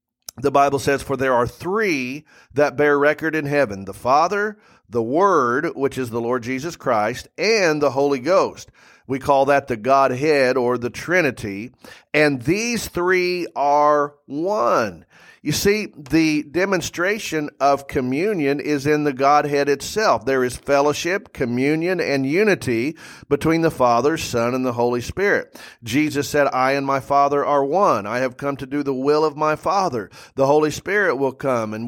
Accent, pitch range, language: American, 135-160 Hz, English